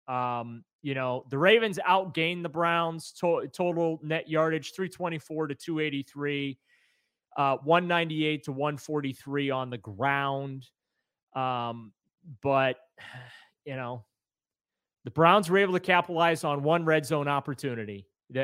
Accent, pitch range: American, 140-180 Hz